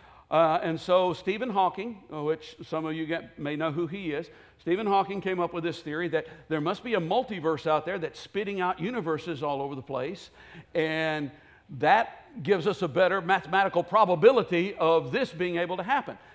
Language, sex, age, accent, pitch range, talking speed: English, male, 60-79, American, 150-200 Hz, 185 wpm